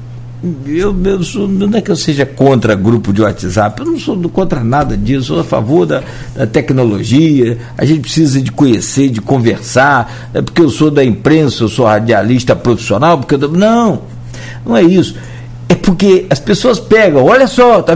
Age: 60-79